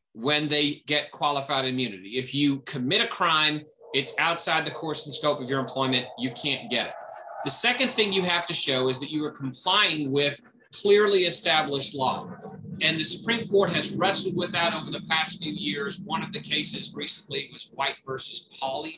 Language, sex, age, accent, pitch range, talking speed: English, male, 40-59, American, 130-170 Hz, 195 wpm